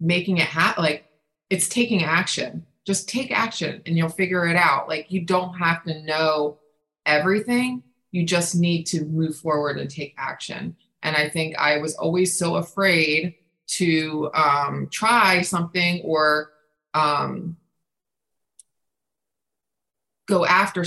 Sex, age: female, 20-39